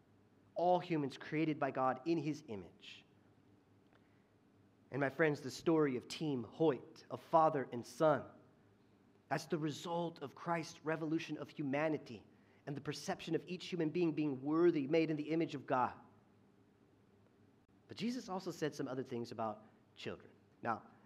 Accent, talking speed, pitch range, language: American, 150 wpm, 135-190 Hz, English